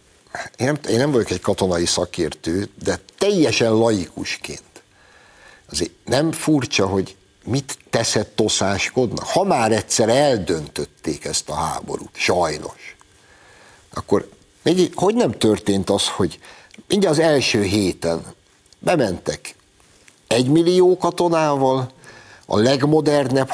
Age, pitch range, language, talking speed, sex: 60-79, 95-135 Hz, Hungarian, 100 wpm, male